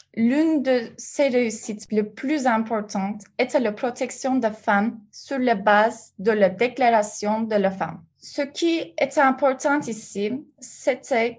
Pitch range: 210-255 Hz